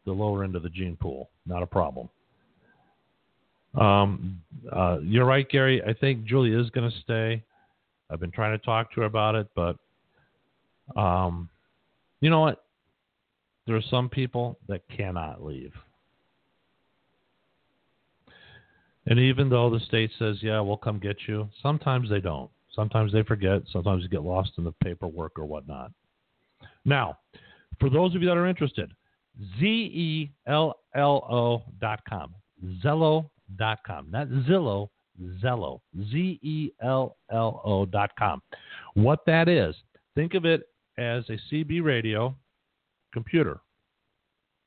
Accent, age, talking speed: American, 50-69, 135 wpm